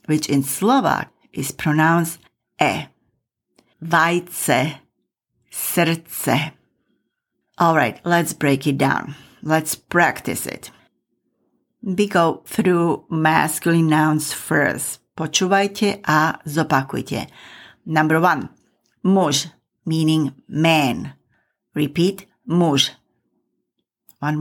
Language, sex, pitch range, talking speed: English, female, 150-190 Hz, 80 wpm